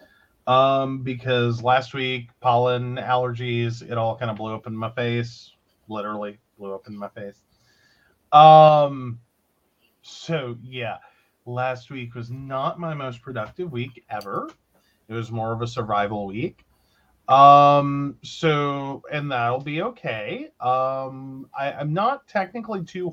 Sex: male